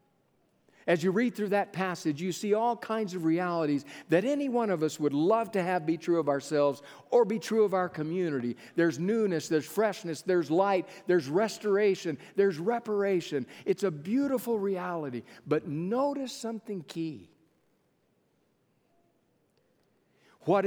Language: English